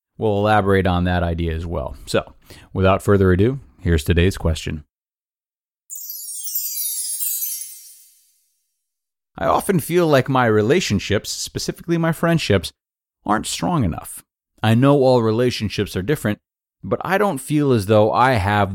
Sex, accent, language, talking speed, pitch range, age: male, American, English, 130 wpm, 90-115 Hz, 30-49